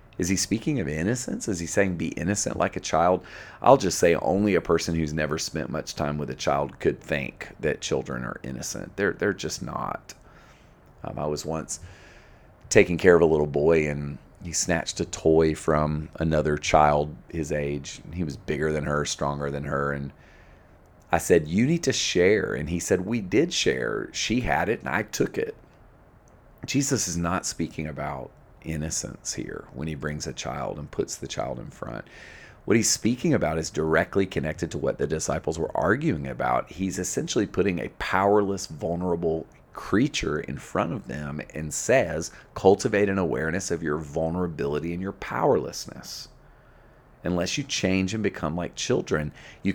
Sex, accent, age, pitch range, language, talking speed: male, American, 40-59, 75-95 Hz, English, 175 wpm